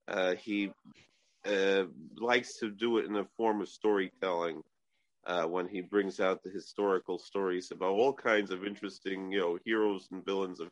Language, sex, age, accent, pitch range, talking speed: English, male, 40-59, American, 105-125 Hz, 175 wpm